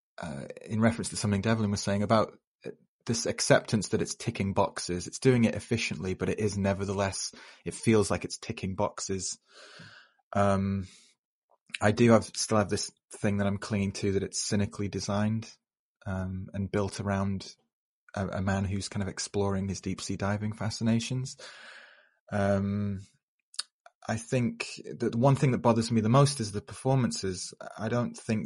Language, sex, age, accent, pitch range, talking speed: English, male, 30-49, British, 95-110 Hz, 165 wpm